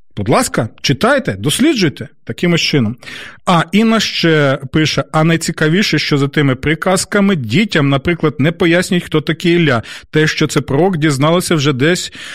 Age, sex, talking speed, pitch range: 30-49, male, 145 wpm, 145-175 Hz